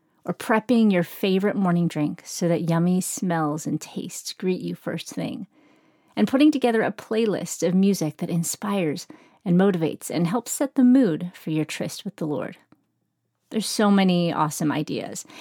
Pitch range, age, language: 165-225 Hz, 30-49, English